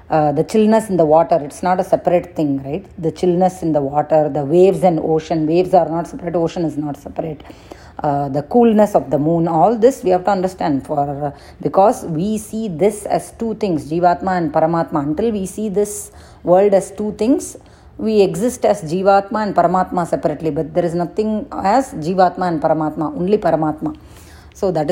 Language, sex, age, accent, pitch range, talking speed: English, female, 30-49, Indian, 155-190 Hz, 195 wpm